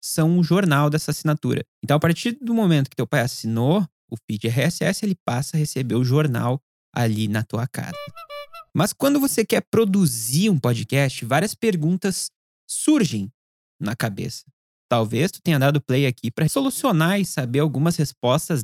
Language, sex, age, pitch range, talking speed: Portuguese, male, 20-39, 130-195 Hz, 165 wpm